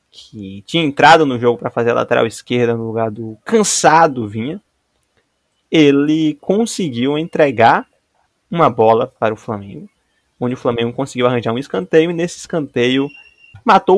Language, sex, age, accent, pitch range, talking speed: Portuguese, male, 20-39, Brazilian, 120-165 Hz, 145 wpm